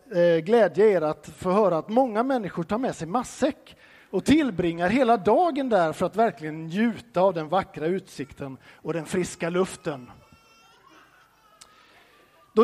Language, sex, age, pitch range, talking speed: Swedish, male, 50-69, 175-260 Hz, 140 wpm